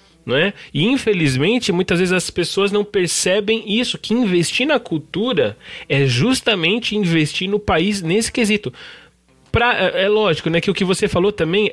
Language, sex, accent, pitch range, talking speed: Portuguese, male, Brazilian, 155-210 Hz, 160 wpm